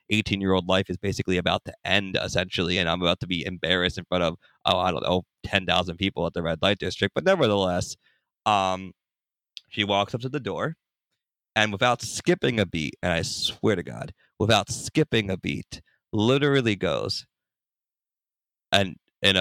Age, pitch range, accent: 30-49, 95-130 Hz, American